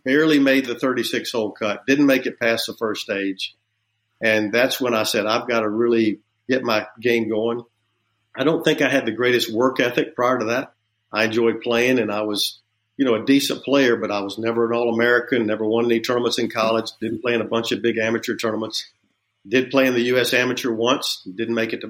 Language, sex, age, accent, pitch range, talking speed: English, male, 50-69, American, 110-130 Hz, 220 wpm